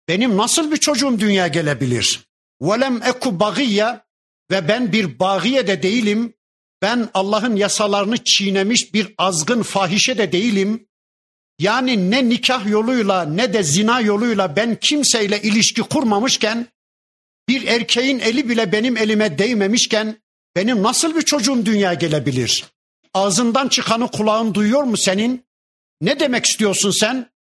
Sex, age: male, 60-79